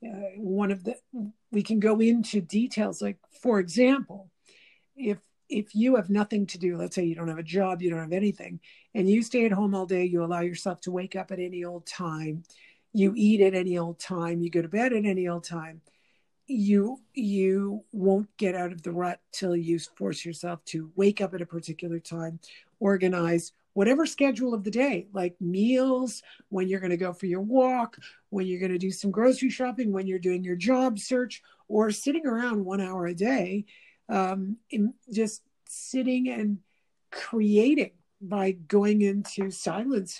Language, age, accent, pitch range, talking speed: English, 50-69, American, 180-230 Hz, 190 wpm